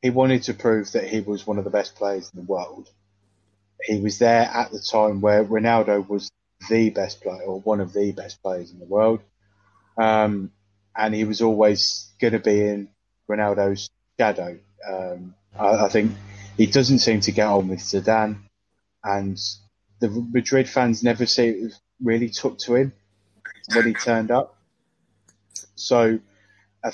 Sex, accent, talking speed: male, British, 165 wpm